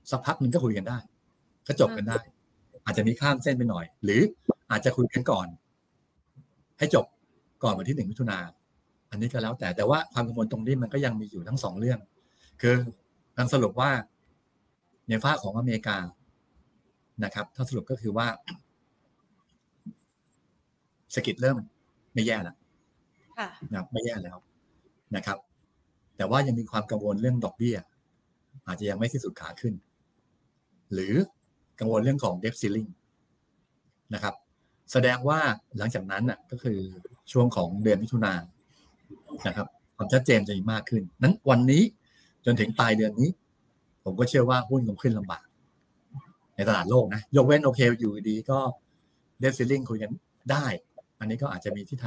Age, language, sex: 60-79, Thai, male